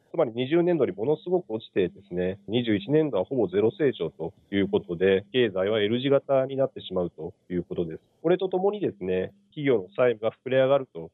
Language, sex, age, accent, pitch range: Japanese, male, 40-59, native, 95-140 Hz